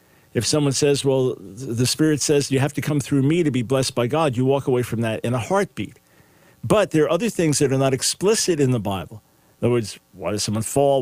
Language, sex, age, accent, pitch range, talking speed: English, male, 50-69, American, 120-140 Hz, 245 wpm